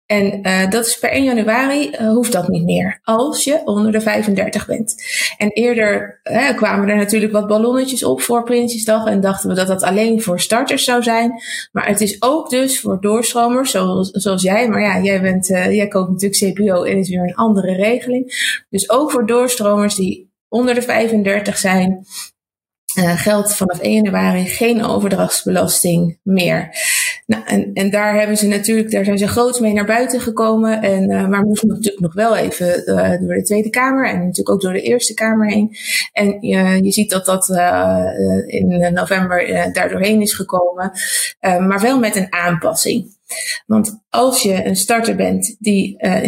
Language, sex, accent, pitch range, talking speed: Dutch, female, Dutch, 190-230 Hz, 185 wpm